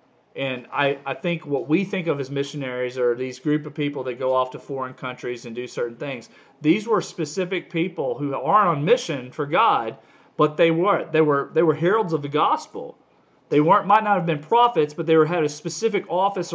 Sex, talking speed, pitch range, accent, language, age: male, 220 wpm, 135-180 Hz, American, English, 40-59